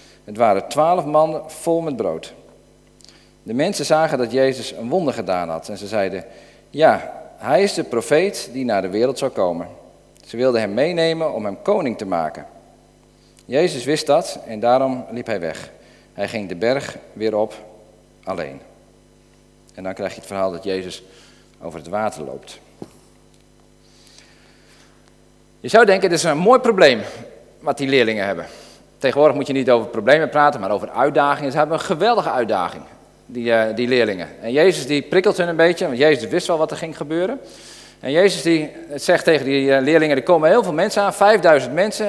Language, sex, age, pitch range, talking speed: Dutch, male, 40-59, 120-165 Hz, 180 wpm